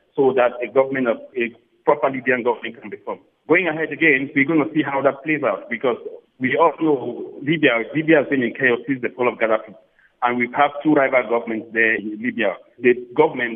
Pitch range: 120-165 Hz